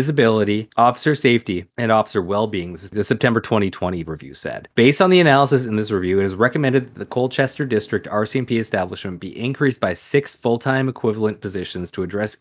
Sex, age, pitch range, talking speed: male, 30-49, 100-130 Hz, 175 wpm